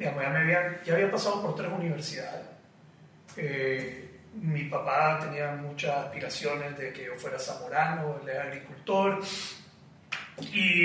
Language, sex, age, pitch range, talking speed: Spanish, male, 30-49, 165-205 Hz, 135 wpm